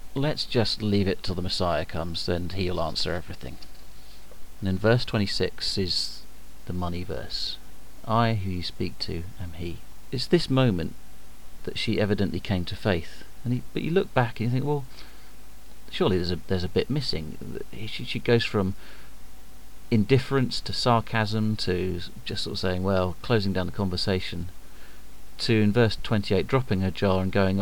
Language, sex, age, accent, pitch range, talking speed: English, male, 40-59, British, 90-115 Hz, 170 wpm